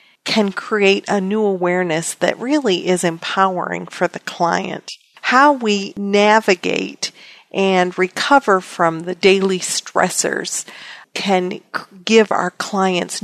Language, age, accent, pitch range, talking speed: English, 50-69, American, 180-220 Hz, 115 wpm